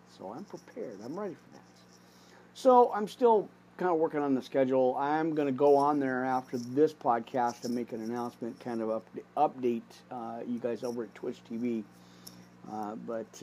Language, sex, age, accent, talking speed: English, male, 50-69, American, 190 wpm